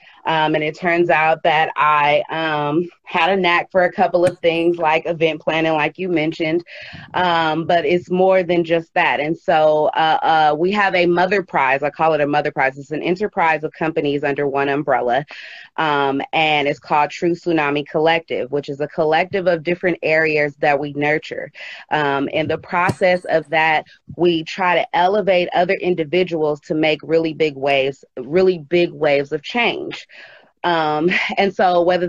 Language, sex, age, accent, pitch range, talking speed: English, female, 30-49, American, 155-180 Hz, 180 wpm